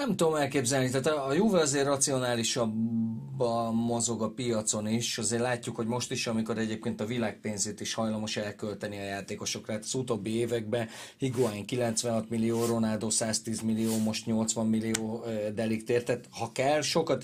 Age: 30-49